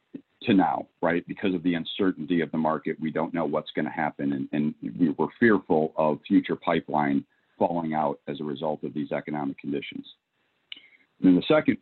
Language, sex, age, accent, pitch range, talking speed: English, male, 40-59, American, 75-90 Hz, 190 wpm